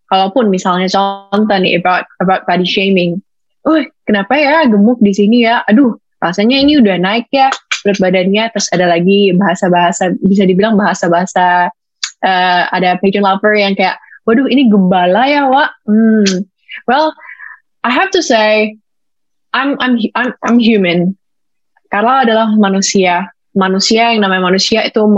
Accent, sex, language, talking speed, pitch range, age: native, female, Indonesian, 150 wpm, 185-235 Hz, 20-39